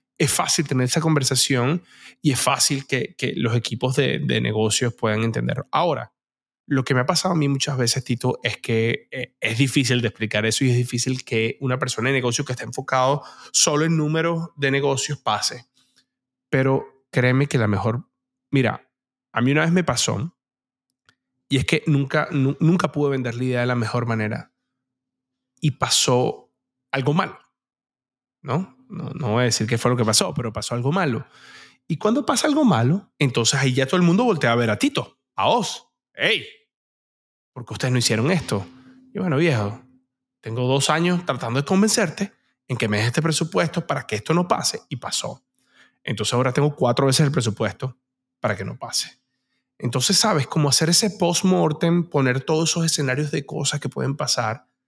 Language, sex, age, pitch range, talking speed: Spanish, male, 20-39, 125-160 Hz, 185 wpm